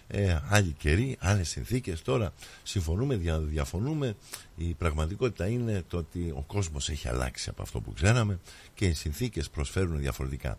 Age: 50-69